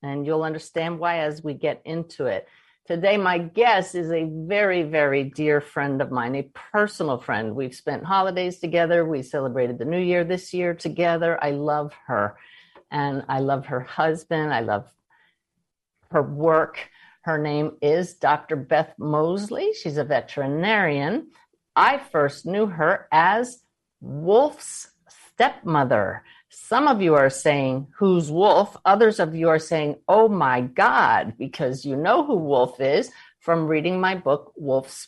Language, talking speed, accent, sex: English, 150 wpm, American, female